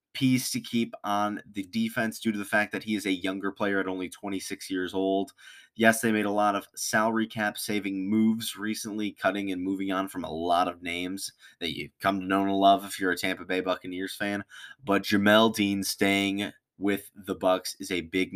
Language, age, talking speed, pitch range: English, 20-39, 210 wpm, 95-110 Hz